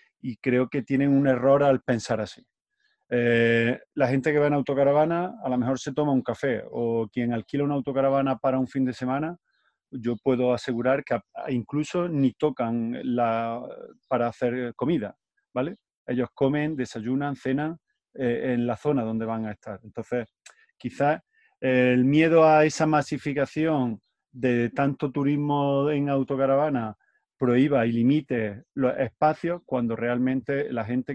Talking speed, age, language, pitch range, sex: 150 wpm, 30-49, Spanish, 120-145 Hz, male